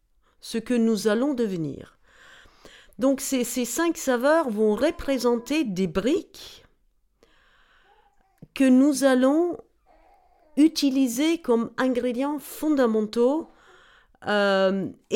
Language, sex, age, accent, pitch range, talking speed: French, female, 50-69, French, 195-275 Hz, 85 wpm